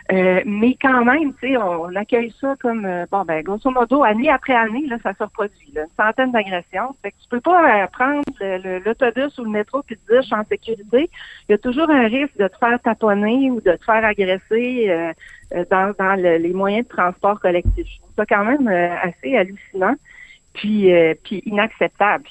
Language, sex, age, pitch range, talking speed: French, female, 60-79, 180-225 Hz, 210 wpm